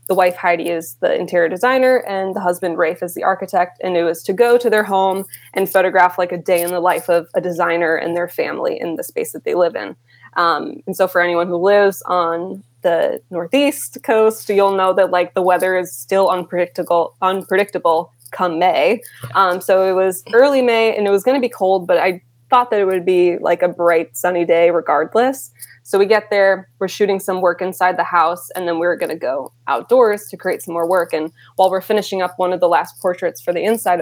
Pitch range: 175-210 Hz